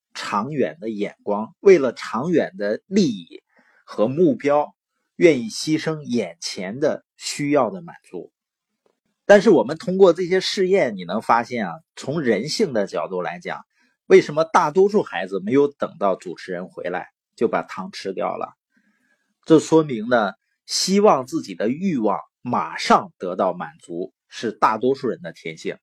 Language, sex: Chinese, male